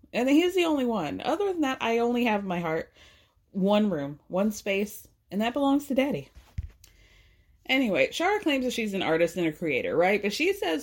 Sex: female